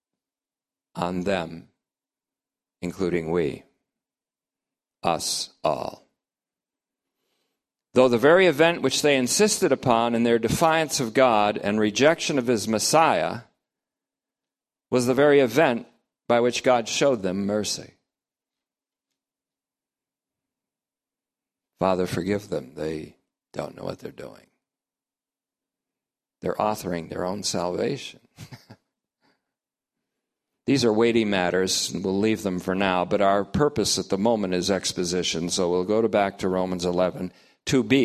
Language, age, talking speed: English, 50-69, 120 wpm